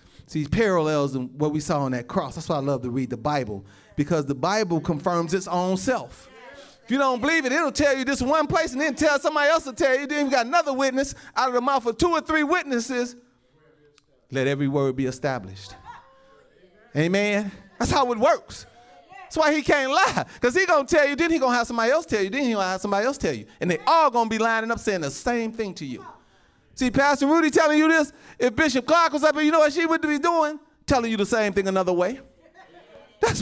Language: English